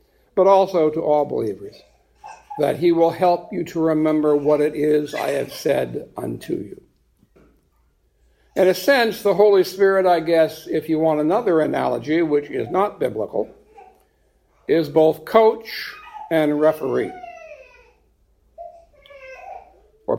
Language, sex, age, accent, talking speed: English, male, 60-79, American, 130 wpm